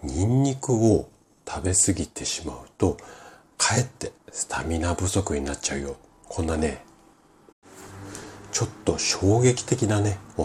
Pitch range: 80-115 Hz